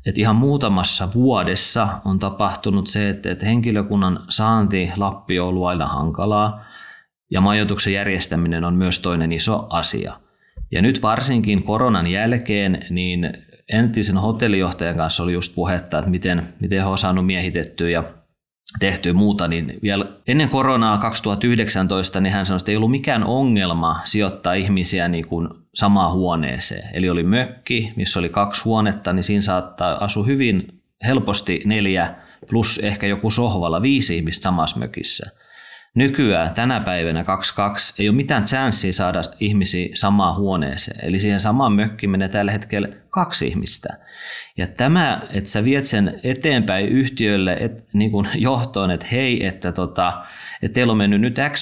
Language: Finnish